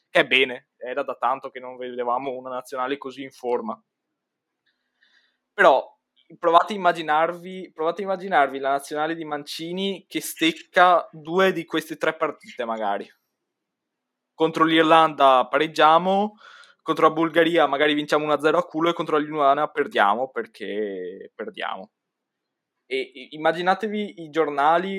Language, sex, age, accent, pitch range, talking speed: Italian, male, 20-39, native, 135-165 Hz, 125 wpm